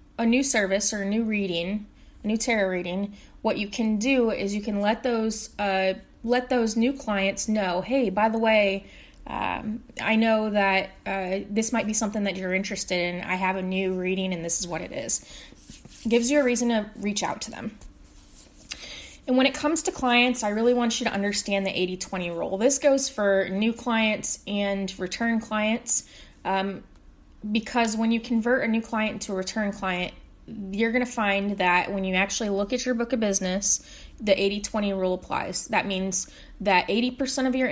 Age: 20-39